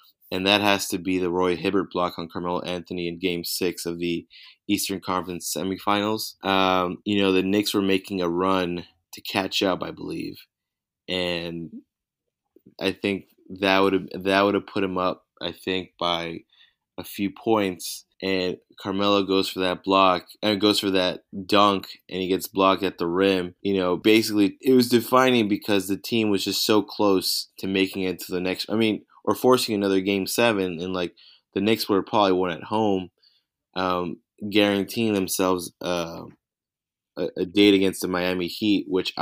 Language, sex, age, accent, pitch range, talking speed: English, male, 20-39, American, 90-100 Hz, 175 wpm